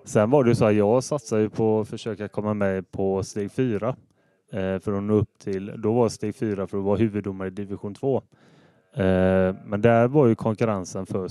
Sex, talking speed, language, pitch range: male, 220 wpm, Swedish, 100-115 Hz